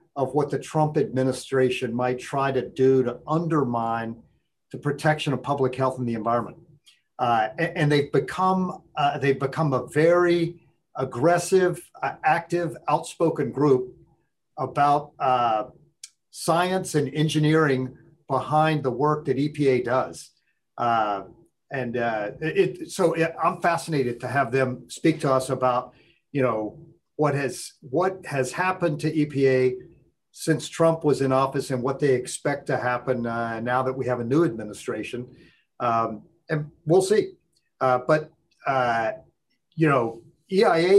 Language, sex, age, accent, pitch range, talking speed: English, male, 50-69, American, 130-160 Hz, 135 wpm